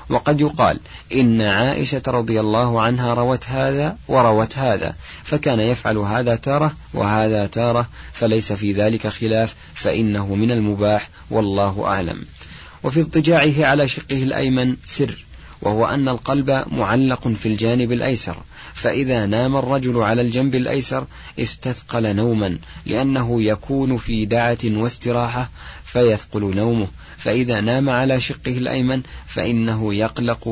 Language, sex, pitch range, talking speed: Arabic, male, 105-125 Hz, 120 wpm